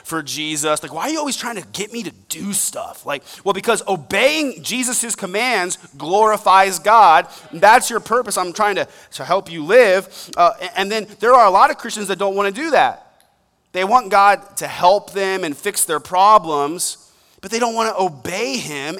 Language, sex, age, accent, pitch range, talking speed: English, male, 30-49, American, 155-205 Hz, 200 wpm